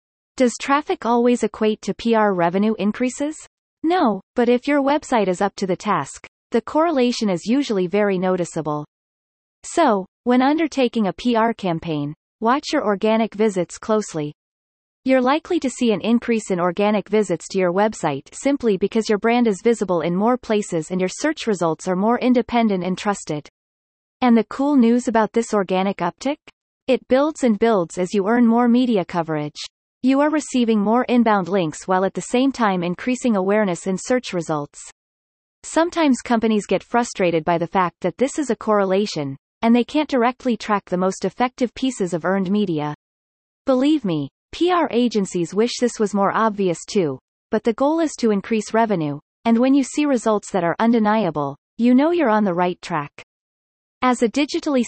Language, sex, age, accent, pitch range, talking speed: English, female, 30-49, American, 185-245 Hz, 175 wpm